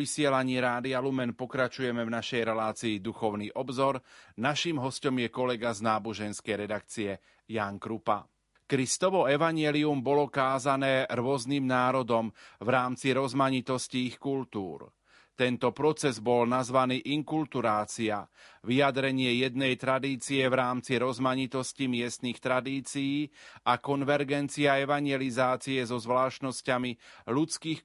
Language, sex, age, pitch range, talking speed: Slovak, male, 30-49, 120-140 Hz, 105 wpm